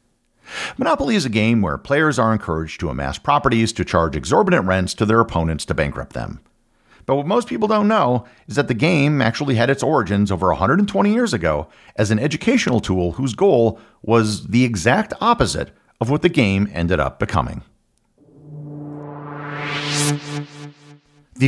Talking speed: 160 wpm